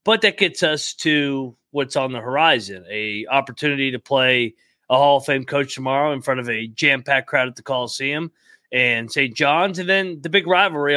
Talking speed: 195 wpm